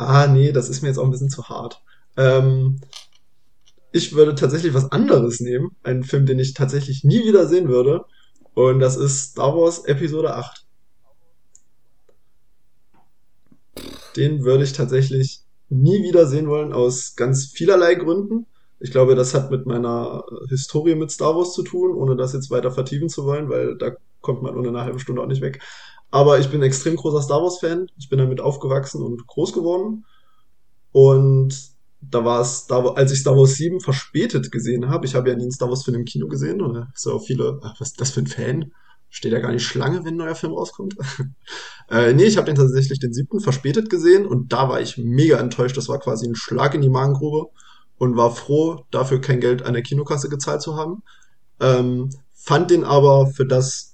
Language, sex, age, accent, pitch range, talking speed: German, male, 20-39, German, 130-155 Hz, 190 wpm